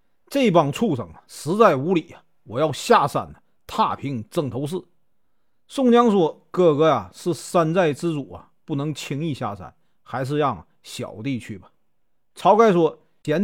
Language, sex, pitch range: Chinese, male, 135-195 Hz